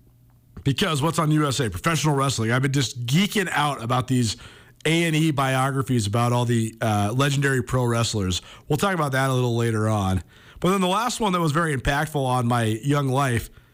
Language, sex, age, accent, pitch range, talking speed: English, male, 40-59, American, 130-170 Hz, 190 wpm